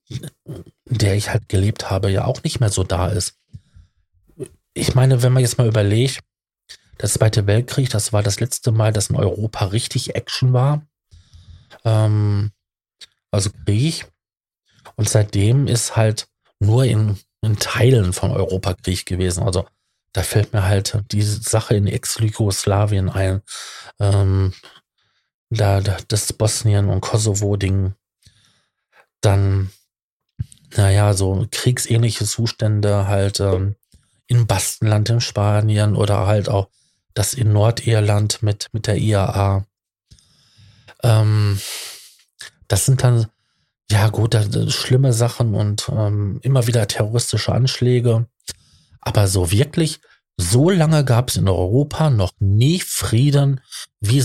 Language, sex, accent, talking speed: German, male, German, 125 wpm